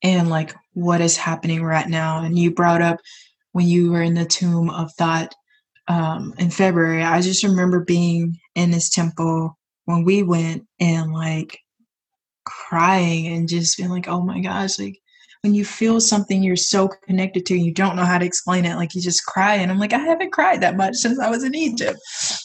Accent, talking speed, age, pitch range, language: American, 200 wpm, 20-39, 170-195 Hz, English